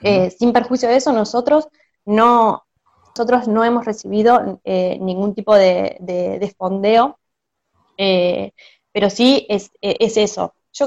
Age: 20-39